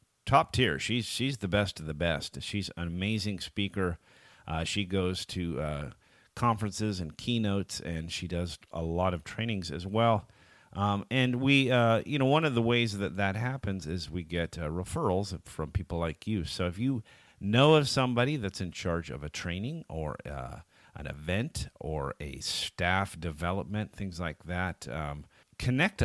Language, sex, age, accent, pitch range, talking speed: English, male, 40-59, American, 80-110 Hz, 175 wpm